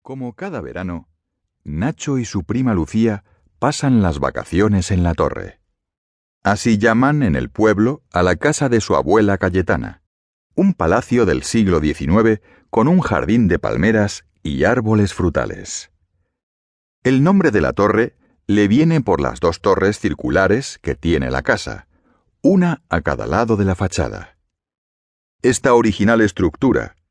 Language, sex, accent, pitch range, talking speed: German, male, Spanish, 85-120 Hz, 145 wpm